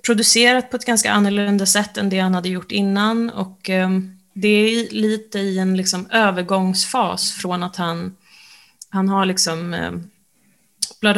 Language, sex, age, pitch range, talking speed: Swedish, female, 20-39, 180-215 Hz, 145 wpm